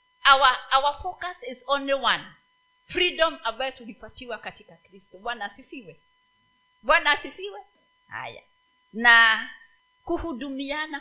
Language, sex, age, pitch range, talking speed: Swahili, female, 40-59, 240-360 Hz, 100 wpm